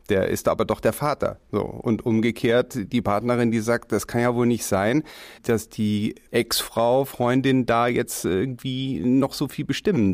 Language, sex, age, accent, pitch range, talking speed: German, male, 40-59, German, 110-135 Hz, 180 wpm